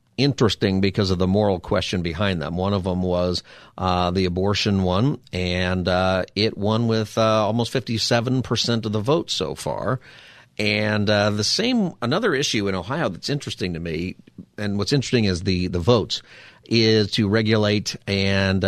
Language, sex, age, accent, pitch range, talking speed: English, male, 50-69, American, 95-120 Hz, 170 wpm